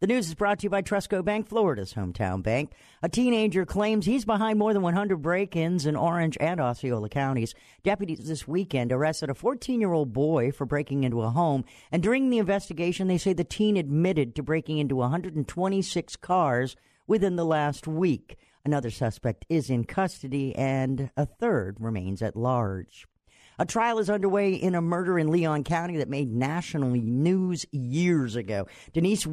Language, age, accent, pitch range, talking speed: English, 50-69, American, 135-185 Hz, 170 wpm